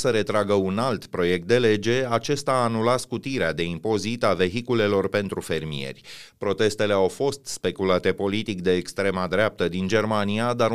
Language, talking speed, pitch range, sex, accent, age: Romanian, 155 wpm, 95-125 Hz, male, native, 30-49